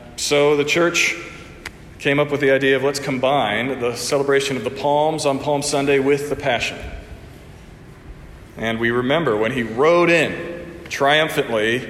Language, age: English, 40-59